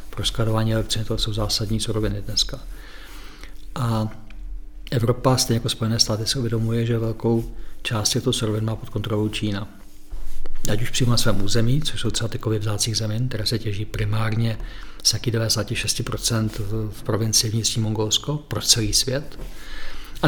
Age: 50-69